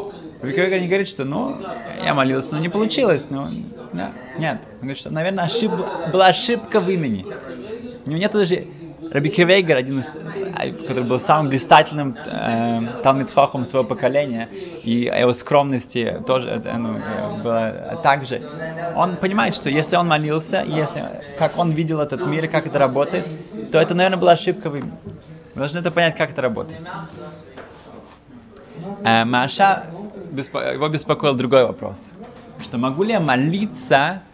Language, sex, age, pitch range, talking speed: Russian, male, 20-39, 125-170 Hz, 145 wpm